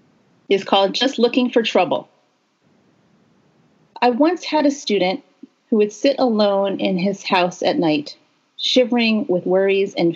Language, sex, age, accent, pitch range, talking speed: English, female, 30-49, American, 180-240 Hz, 140 wpm